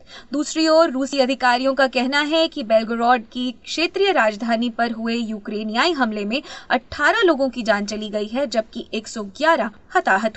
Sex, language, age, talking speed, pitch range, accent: female, Hindi, 20-39, 155 wpm, 235-330 Hz, native